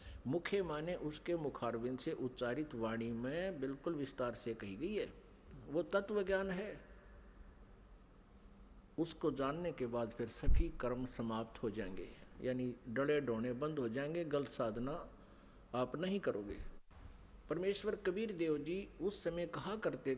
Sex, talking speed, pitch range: male, 140 wpm, 125-165 Hz